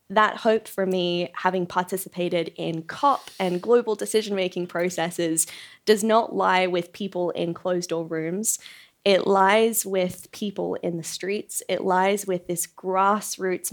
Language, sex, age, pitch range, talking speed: English, female, 20-39, 180-210 Hz, 140 wpm